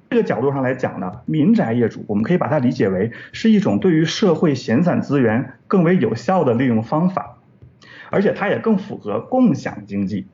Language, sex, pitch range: Chinese, male, 145-225 Hz